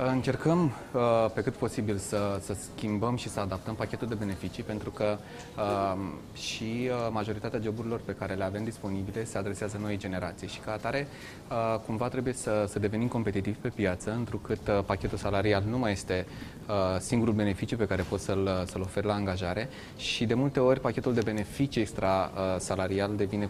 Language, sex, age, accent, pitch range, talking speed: Romanian, male, 20-39, native, 100-120 Hz, 160 wpm